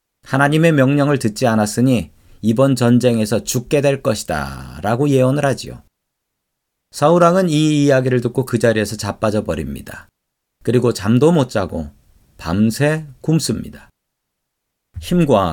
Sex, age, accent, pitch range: male, 40-59, native, 105-145 Hz